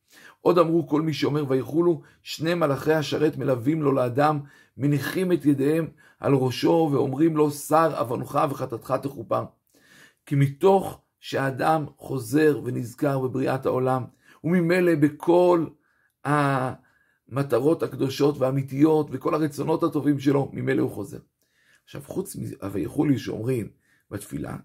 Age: 50-69